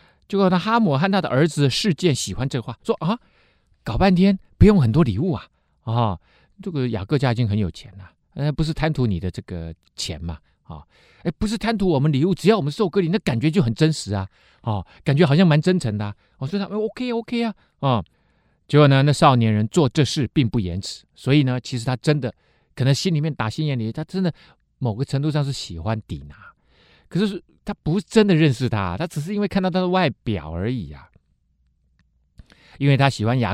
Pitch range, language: 110-175 Hz, Chinese